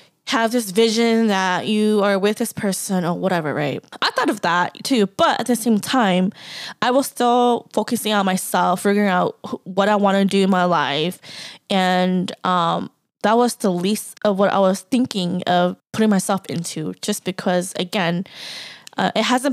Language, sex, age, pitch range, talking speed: English, female, 10-29, 185-220 Hz, 180 wpm